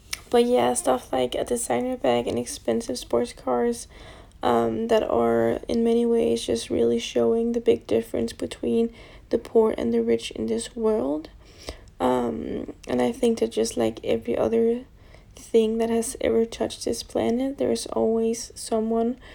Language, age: English, 10-29